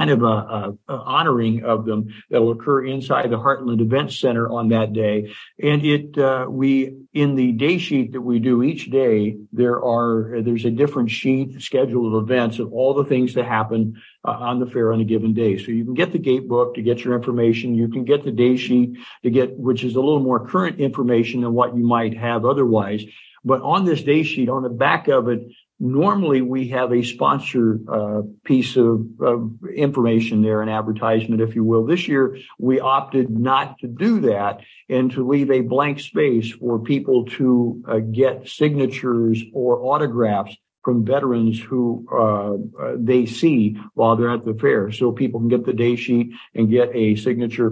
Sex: male